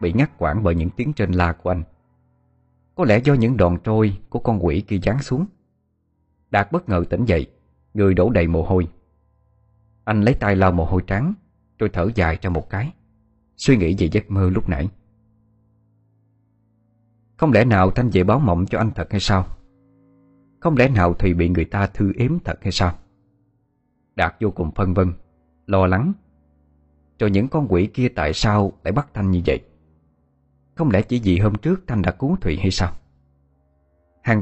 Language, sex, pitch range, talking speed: Vietnamese, male, 80-110 Hz, 190 wpm